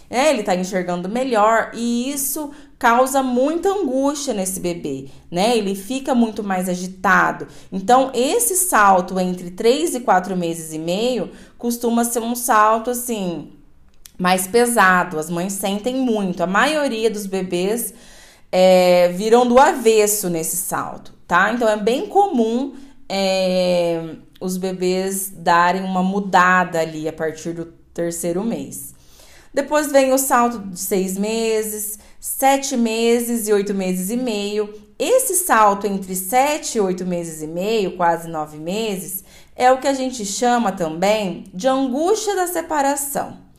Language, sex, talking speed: Portuguese, female, 140 wpm